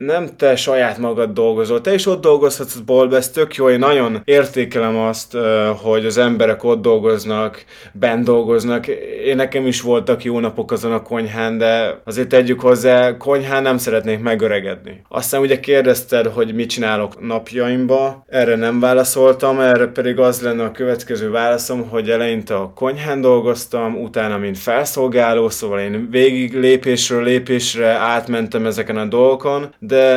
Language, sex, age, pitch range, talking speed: Hungarian, male, 20-39, 115-130 Hz, 150 wpm